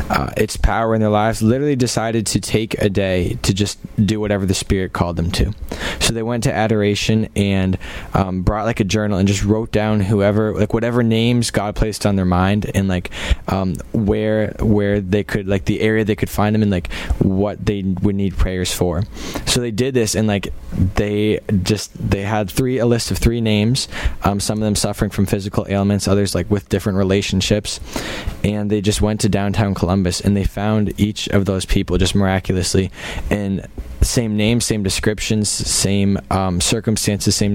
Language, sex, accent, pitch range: English, male, American, 95-110 Hz